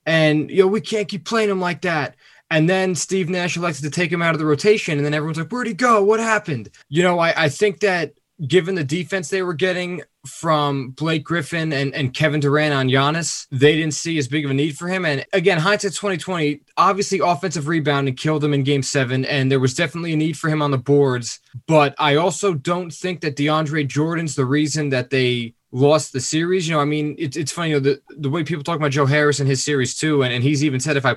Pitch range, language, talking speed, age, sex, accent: 140-165 Hz, English, 245 wpm, 20-39, male, American